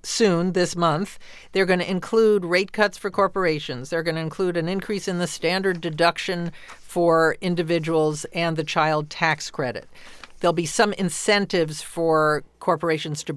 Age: 50-69